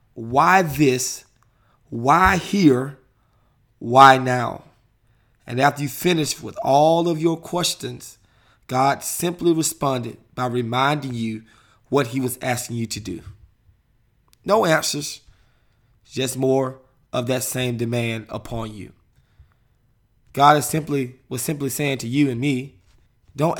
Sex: male